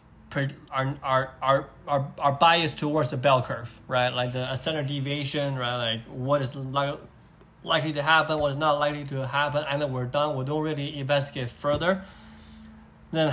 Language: English